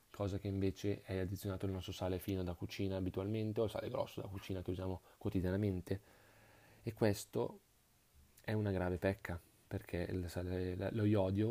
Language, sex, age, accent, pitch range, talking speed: Italian, male, 30-49, native, 95-105 Hz, 160 wpm